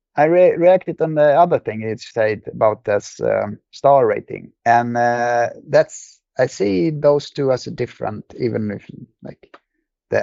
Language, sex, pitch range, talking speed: English, male, 110-135 Hz, 165 wpm